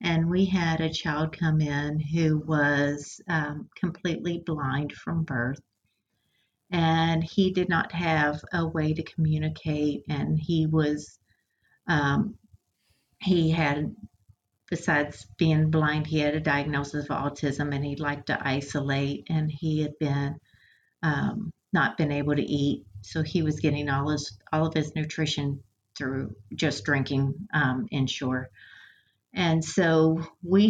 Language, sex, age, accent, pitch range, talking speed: English, female, 40-59, American, 140-160 Hz, 140 wpm